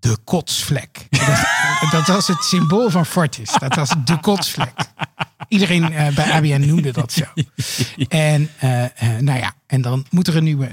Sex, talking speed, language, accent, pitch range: male, 160 wpm, Dutch, Dutch, 130-165 Hz